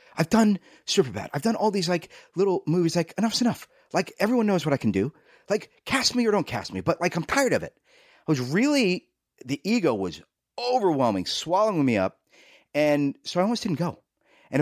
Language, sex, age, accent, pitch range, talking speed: English, male, 30-49, American, 120-185 Hz, 210 wpm